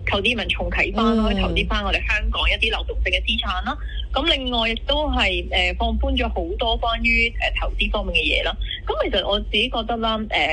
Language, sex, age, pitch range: Chinese, female, 20-39, 195-260 Hz